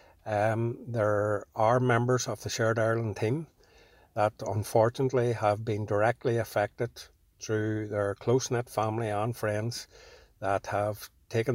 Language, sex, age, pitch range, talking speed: English, male, 60-79, 105-125 Hz, 125 wpm